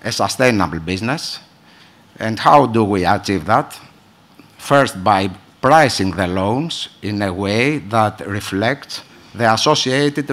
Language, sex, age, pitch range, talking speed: English, male, 60-79, 95-140 Hz, 120 wpm